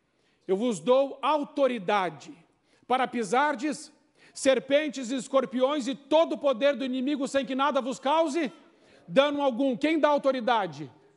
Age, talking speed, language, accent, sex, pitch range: 50-69, 135 wpm, Portuguese, Brazilian, male, 205-270 Hz